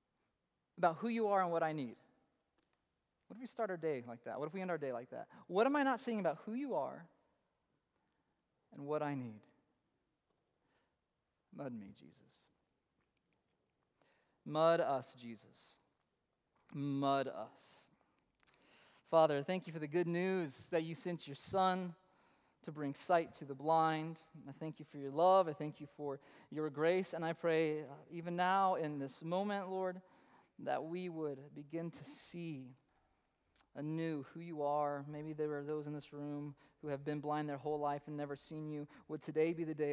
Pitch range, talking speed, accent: 140-170 Hz, 175 wpm, American